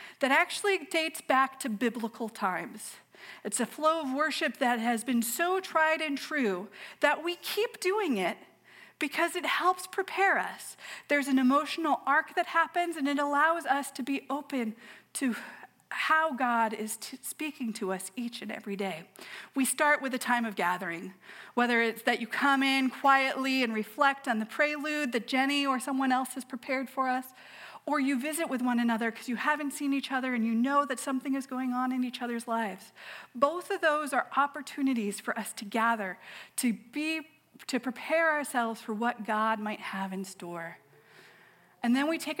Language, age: English, 40-59